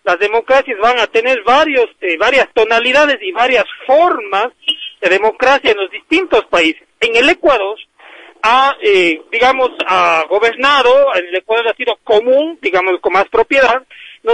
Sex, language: male, Spanish